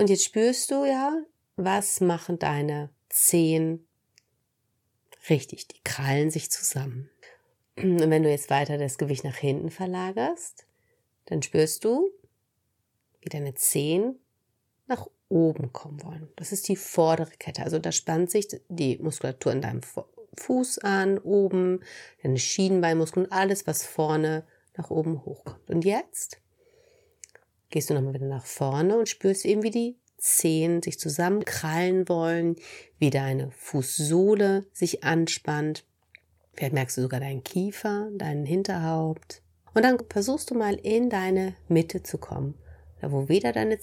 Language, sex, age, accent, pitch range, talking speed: German, female, 30-49, German, 140-195 Hz, 140 wpm